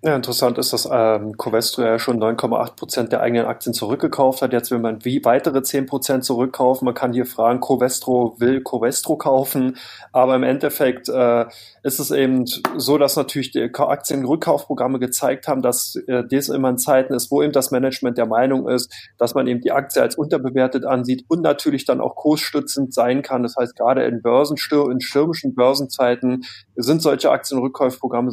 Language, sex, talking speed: German, male, 175 wpm